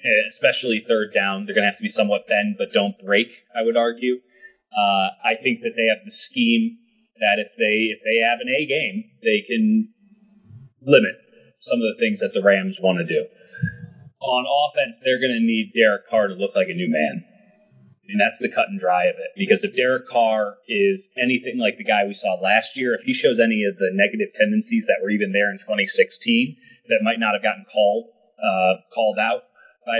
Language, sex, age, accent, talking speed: English, male, 30-49, American, 210 wpm